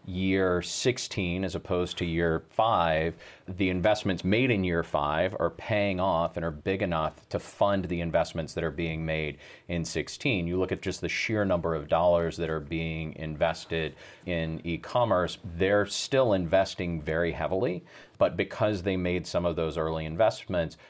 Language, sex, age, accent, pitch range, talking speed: English, male, 40-59, American, 80-95 Hz, 170 wpm